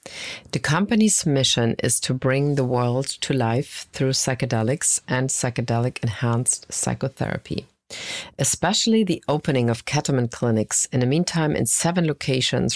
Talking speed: 125 wpm